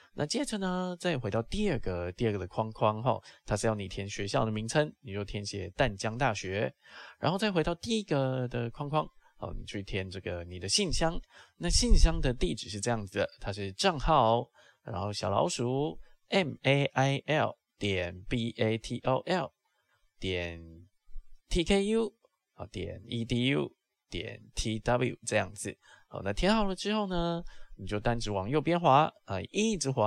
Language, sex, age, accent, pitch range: Chinese, male, 20-39, native, 100-155 Hz